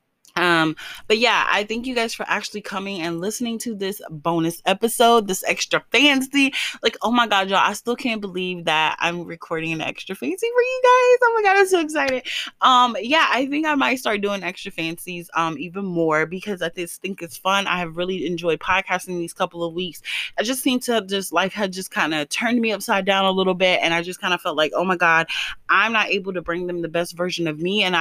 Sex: female